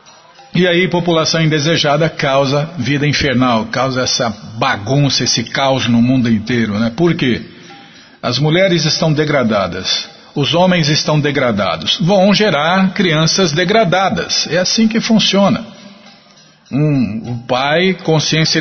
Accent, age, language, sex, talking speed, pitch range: Brazilian, 50-69, Portuguese, male, 120 wpm, 125-185 Hz